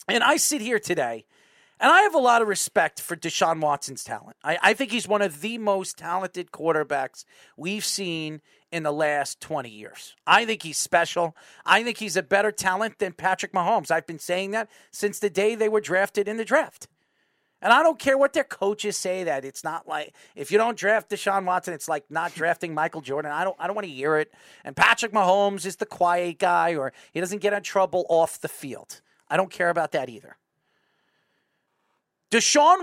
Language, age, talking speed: English, 40-59, 205 wpm